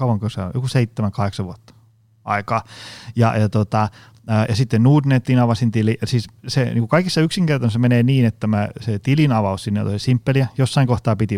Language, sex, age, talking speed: Finnish, male, 30-49, 165 wpm